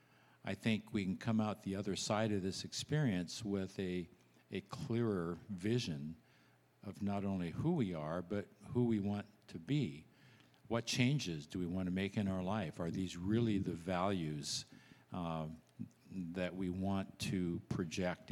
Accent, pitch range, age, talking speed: American, 90-110 Hz, 50-69, 165 wpm